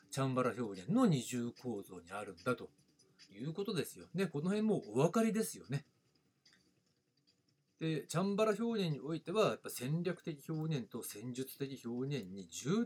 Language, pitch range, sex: Japanese, 125-195 Hz, male